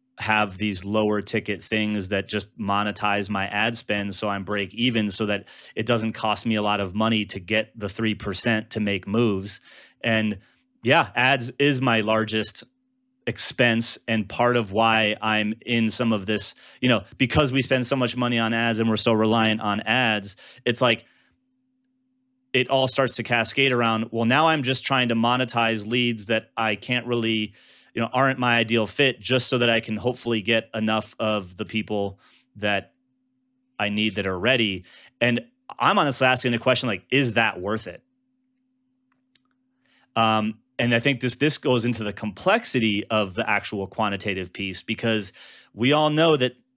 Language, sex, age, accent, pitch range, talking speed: English, male, 30-49, American, 105-130 Hz, 175 wpm